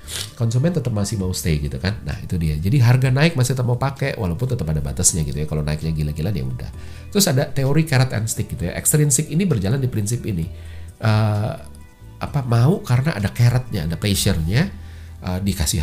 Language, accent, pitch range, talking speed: Indonesian, native, 85-135 Hz, 195 wpm